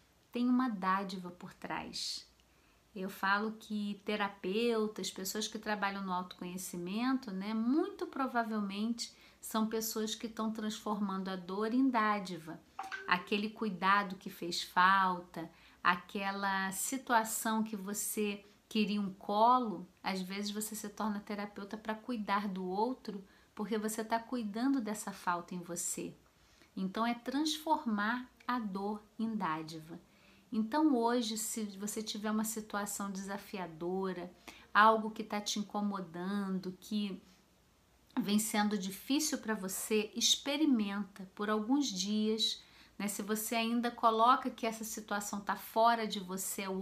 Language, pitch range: Portuguese, 195-230 Hz